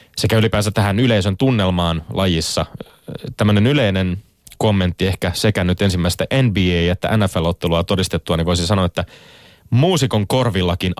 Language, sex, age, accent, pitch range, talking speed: Finnish, male, 30-49, native, 90-110 Hz, 125 wpm